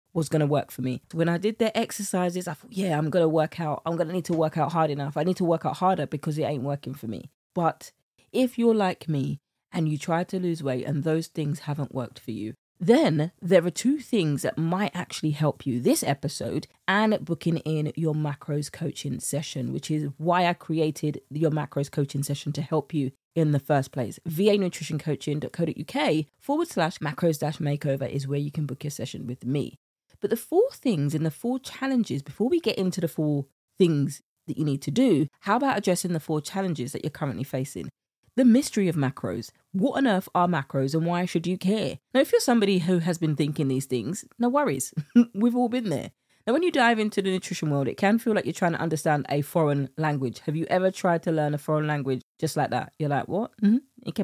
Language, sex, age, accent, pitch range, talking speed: English, female, 20-39, British, 145-190 Hz, 220 wpm